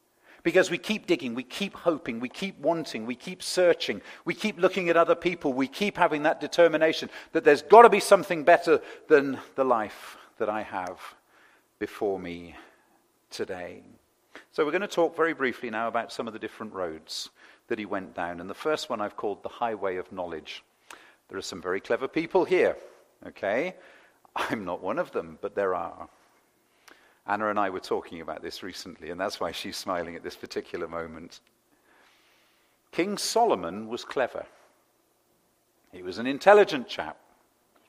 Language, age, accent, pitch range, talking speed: English, 50-69, British, 155-225 Hz, 175 wpm